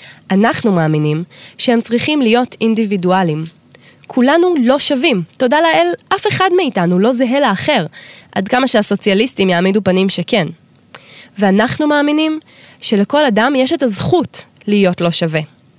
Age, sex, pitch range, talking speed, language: 20-39, female, 180-250 Hz, 125 wpm, Hebrew